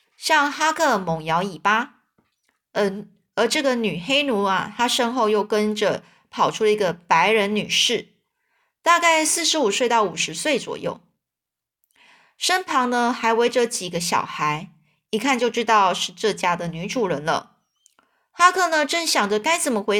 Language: Chinese